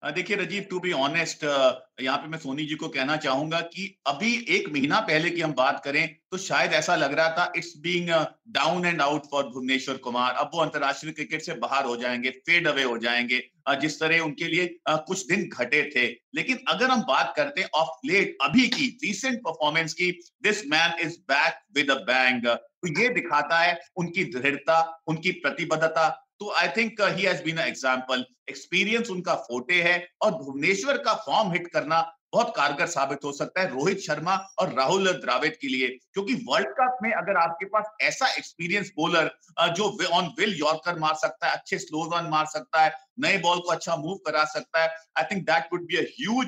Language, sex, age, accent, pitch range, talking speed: Hindi, male, 50-69, native, 150-190 Hz, 170 wpm